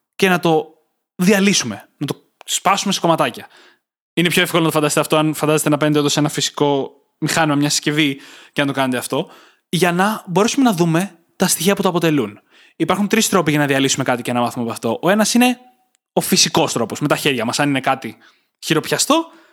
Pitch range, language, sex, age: 150-190 Hz, Greek, male, 20-39